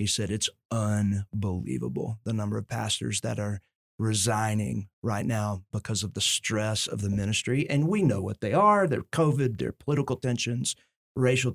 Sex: male